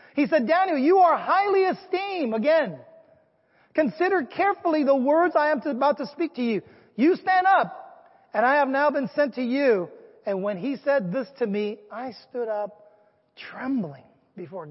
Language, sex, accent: English, male, American